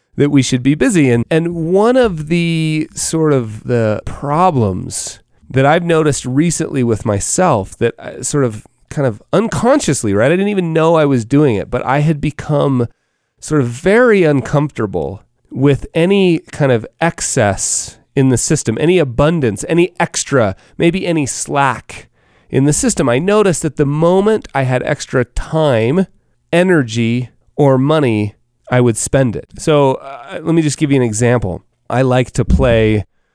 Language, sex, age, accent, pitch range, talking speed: English, male, 30-49, American, 120-160 Hz, 165 wpm